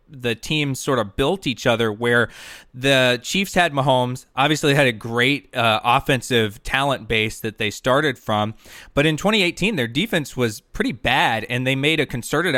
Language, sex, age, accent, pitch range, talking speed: English, male, 20-39, American, 115-145 Hz, 180 wpm